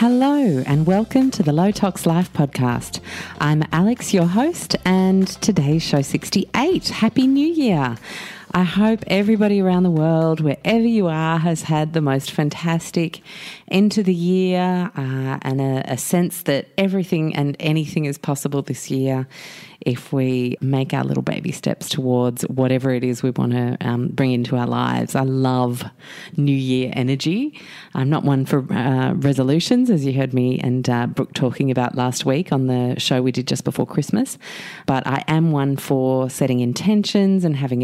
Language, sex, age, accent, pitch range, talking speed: English, female, 30-49, Australian, 130-185 Hz, 175 wpm